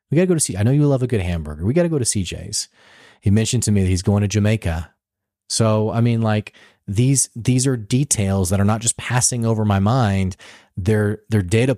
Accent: American